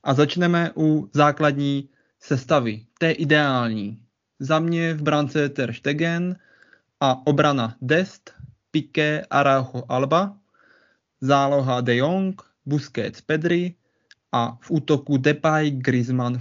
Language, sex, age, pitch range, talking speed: Czech, male, 20-39, 130-155 Hz, 105 wpm